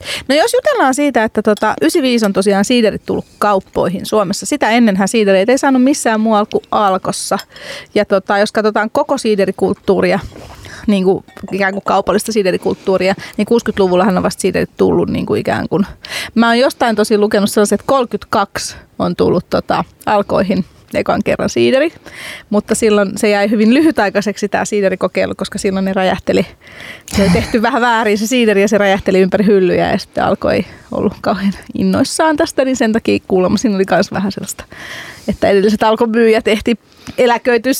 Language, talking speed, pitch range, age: Finnish, 165 wpm, 195-240 Hz, 30-49